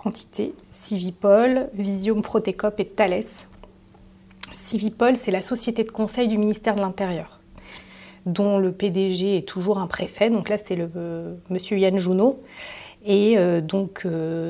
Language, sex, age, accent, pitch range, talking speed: French, female, 30-49, French, 175-205 Hz, 145 wpm